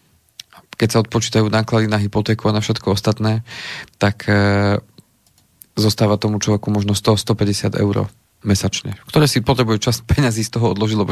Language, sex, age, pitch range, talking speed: Slovak, male, 30-49, 105-115 Hz, 150 wpm